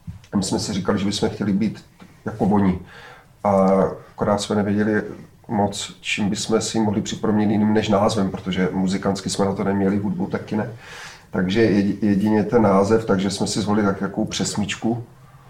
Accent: native